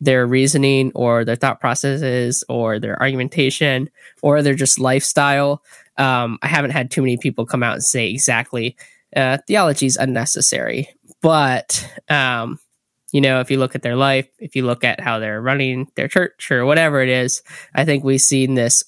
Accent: American